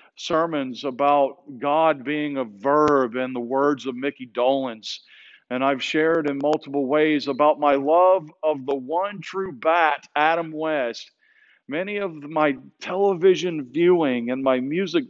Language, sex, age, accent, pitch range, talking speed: English, male, 50-69, American, 135-185 Hz, 145 wpm